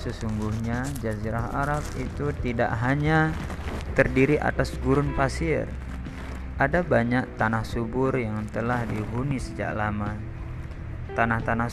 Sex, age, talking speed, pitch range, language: male, 20-39, 100 wpm, 105-130 Hz, Indonesian